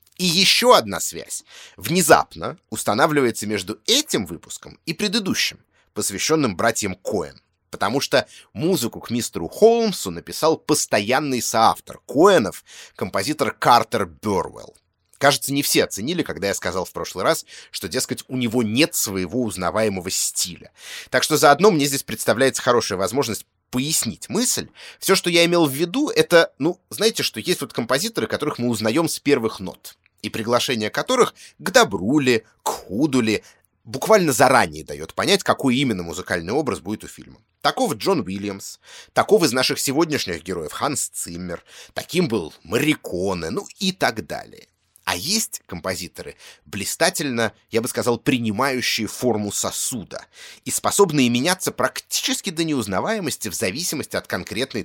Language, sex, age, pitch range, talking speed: Russian, male, 30-49, 105-170 Hz, 145 wpm